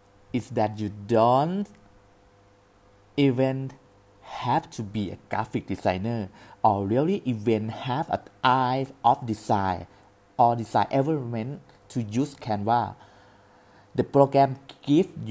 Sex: male